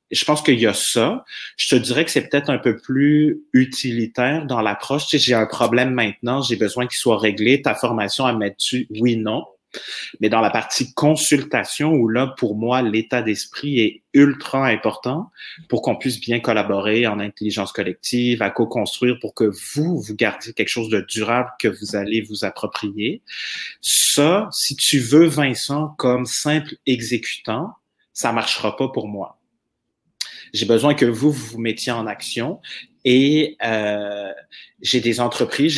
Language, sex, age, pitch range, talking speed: French, male, 30-49, 110-140 Hz, 170 wpm